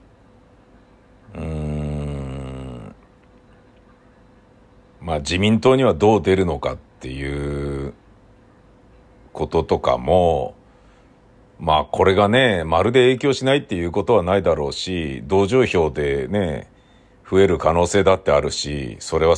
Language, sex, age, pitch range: Japanese, male, 50-69, 85-130 Hz